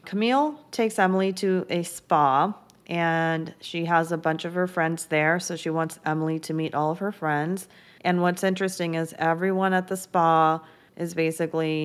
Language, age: English, 30-49